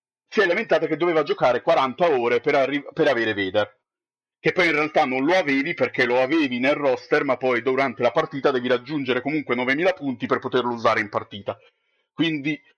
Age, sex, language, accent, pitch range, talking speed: 30-49, male, Italian, native, 120-145 Hz, 190 wpm